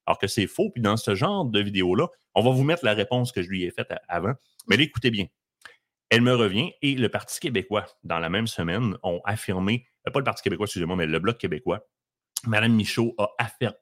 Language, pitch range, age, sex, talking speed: French, 95-125 Hz, 30-49, male, 220 wpm